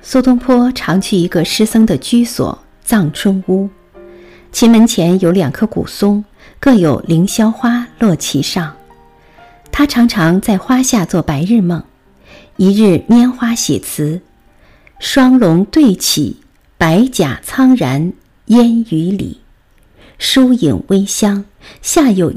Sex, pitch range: female, 170-240 Hz